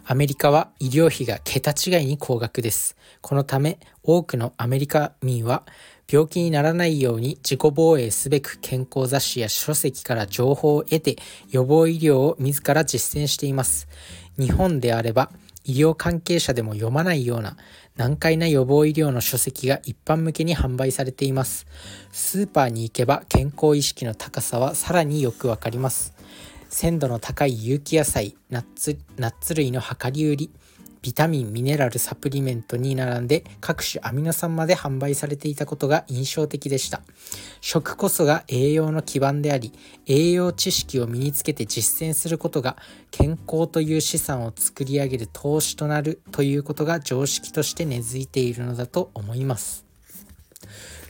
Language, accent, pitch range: Japanese, native, 120-155 Hz